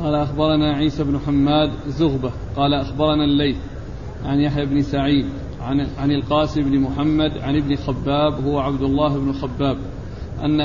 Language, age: Arabic, 40-59